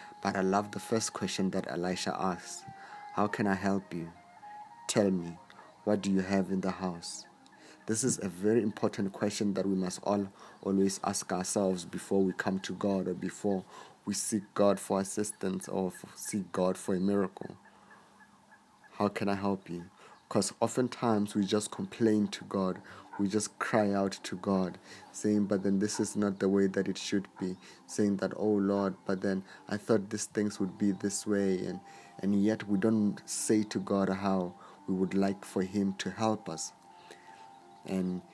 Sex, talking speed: male, 180 wpm